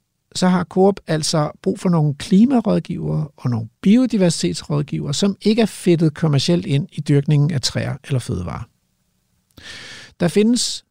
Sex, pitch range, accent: male, 135-200 Hz, native